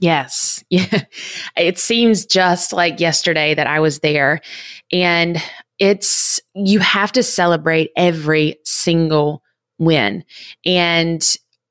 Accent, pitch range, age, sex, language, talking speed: American, 170-215 Hz, 20-39, female, English, 110 wpm